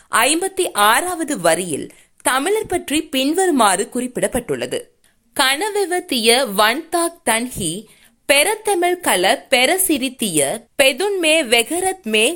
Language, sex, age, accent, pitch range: Tamil, female, 20-39, native, 220-320 Hz